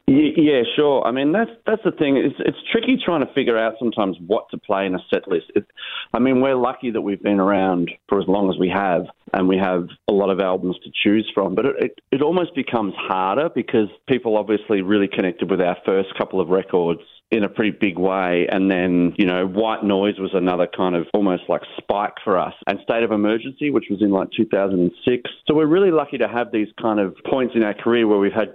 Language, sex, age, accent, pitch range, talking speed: English, male, 30-49, Australian, 95-130 Hz, 240 wpm